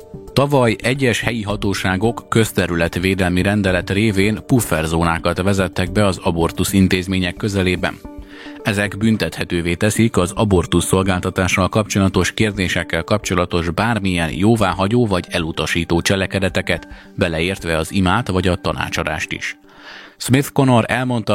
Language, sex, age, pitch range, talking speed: Hungarian, male, 30-49, 90-110 Hz, 105 wpm